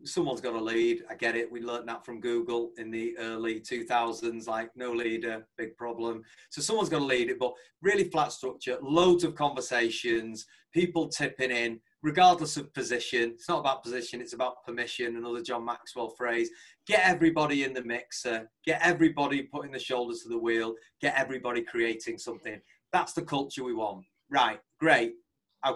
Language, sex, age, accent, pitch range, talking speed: English, male, 30-49, British, 115-150 Hz, 175 wpm